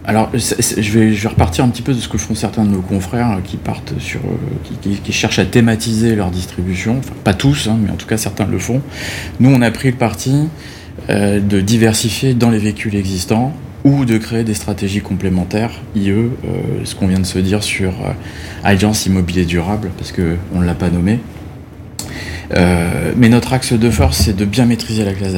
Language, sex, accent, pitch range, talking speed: French, male, French, 90-115 Hz, 220 wpm